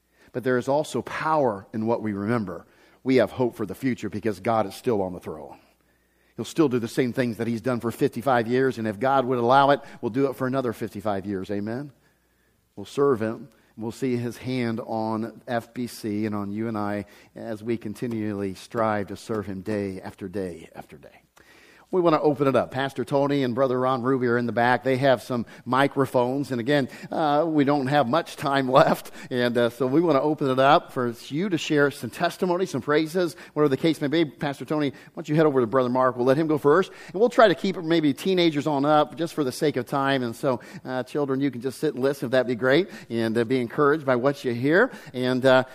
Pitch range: 115-145 Hz